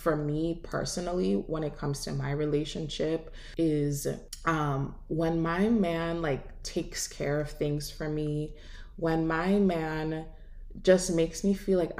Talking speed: 145 wpm